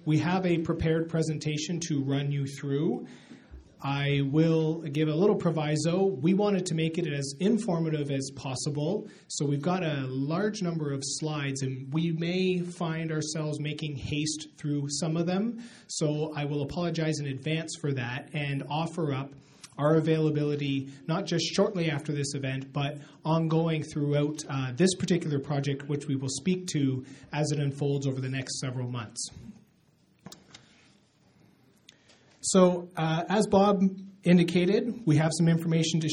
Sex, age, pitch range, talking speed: male, 30-49, 140-165 Hz, 155 wpm